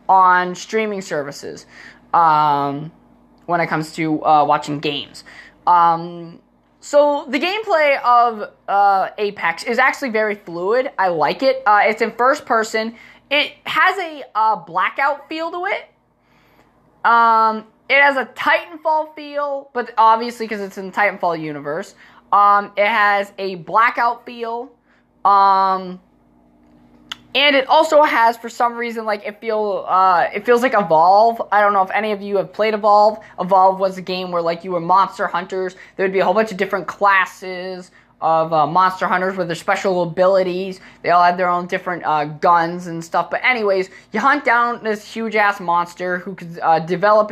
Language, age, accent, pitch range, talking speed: English, 20-39, American, 175-225 Hz, 165 wpm